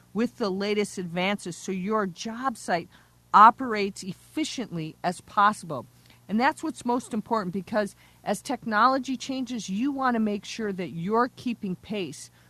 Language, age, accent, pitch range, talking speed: English, 50-69, American, 180-220 Hz, 145 wpm